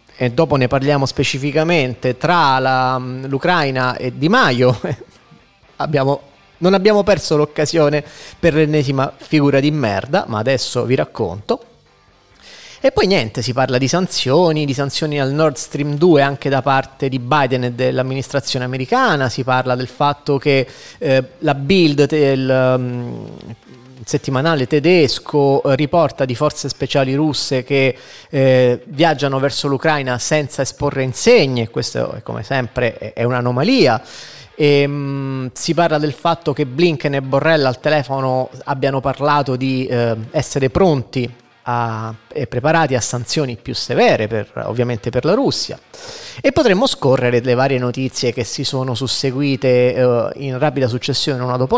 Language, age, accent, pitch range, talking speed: Italian, 30-49, native, 125-150 Hz, 140 wpm